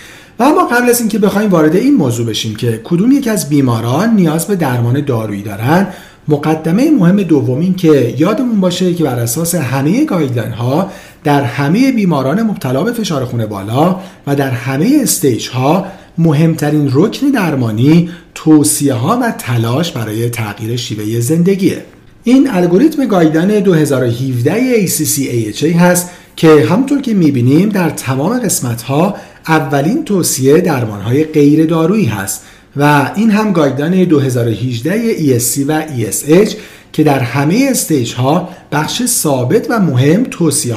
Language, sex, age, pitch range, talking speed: Persian, male, 50-69, 130-185 Hz, 135 wpm